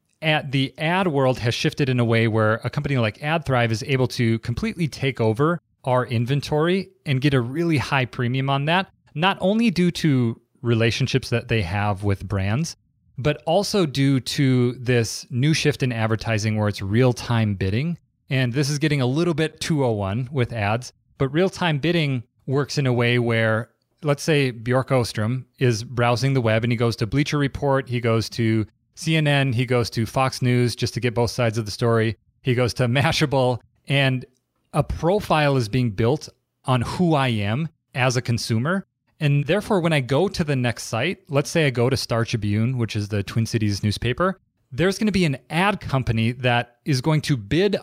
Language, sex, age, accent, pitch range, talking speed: English, male, 30-49, American, 115-150 Hz, 190 wpm